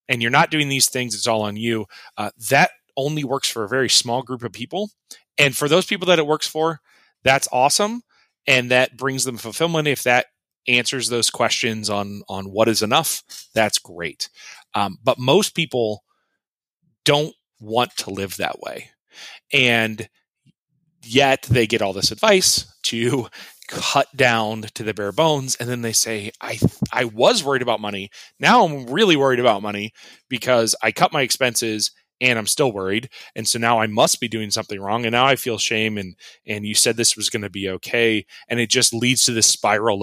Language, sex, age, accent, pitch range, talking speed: English, male, 30-49, American, 110-135 Hz, 190 wpm